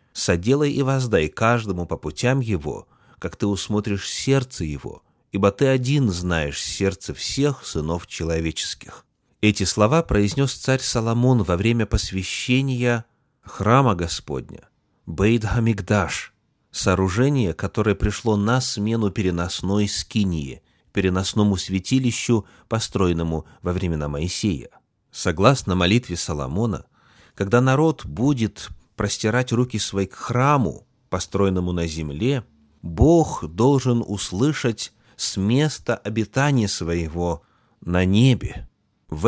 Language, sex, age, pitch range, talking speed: Russian, male, 30-49, 90-125 Hz, 105 wpm